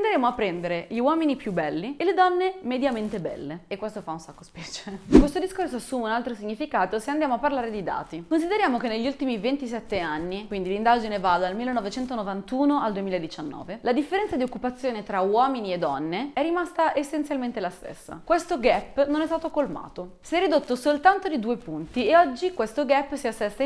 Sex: female